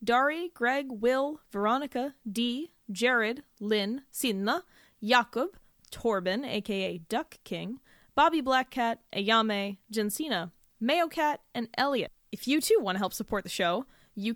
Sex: female